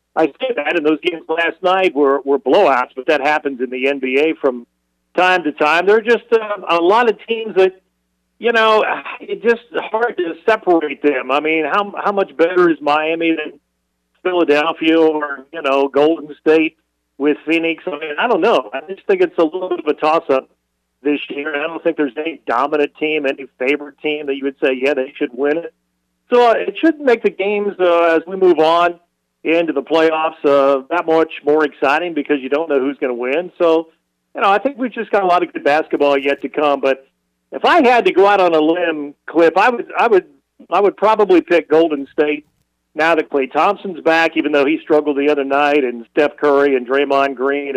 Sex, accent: male, American